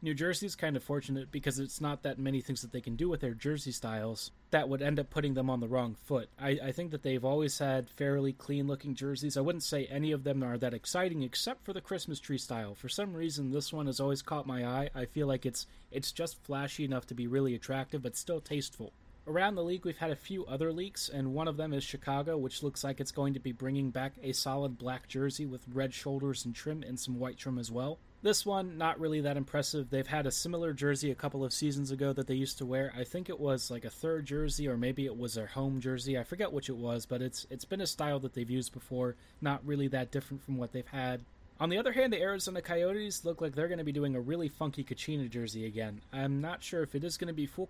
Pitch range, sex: 130-155 Hz, male